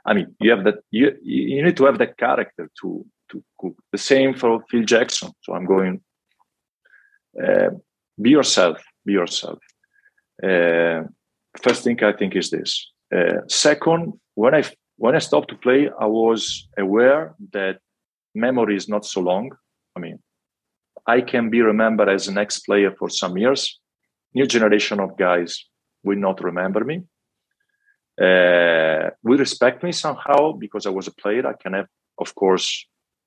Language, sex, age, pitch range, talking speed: English, male, 40-59, 100-130 Hz, 160 wpm